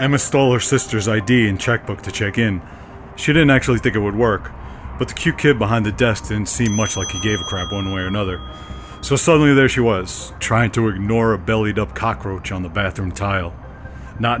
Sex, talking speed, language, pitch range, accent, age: male, 220 wpm, English, 95-120 Hz, American, 40-59